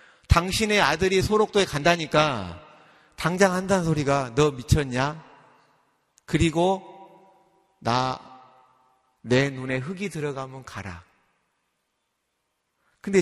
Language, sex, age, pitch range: Korean, male, 40-59, 120-170 Hz